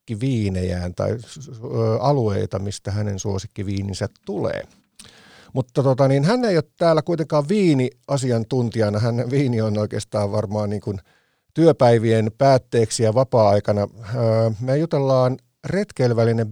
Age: 50-69